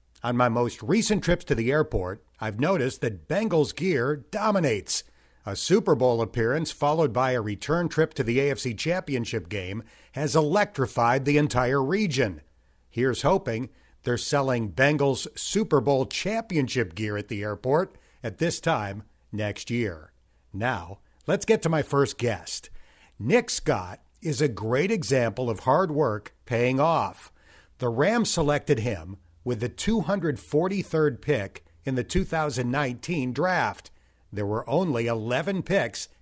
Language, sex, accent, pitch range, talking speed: English, male, American, 110-155 Hz, 140 wpm